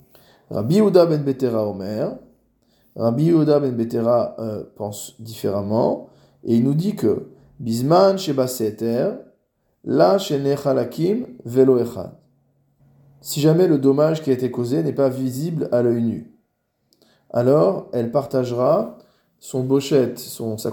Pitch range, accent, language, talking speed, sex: 115-145 Hz, French, French, 120 wpm, male